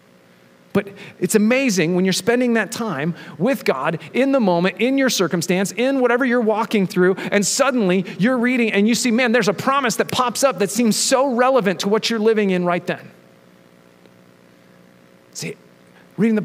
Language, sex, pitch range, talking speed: English, male, 170-230 Hz, 180 wpm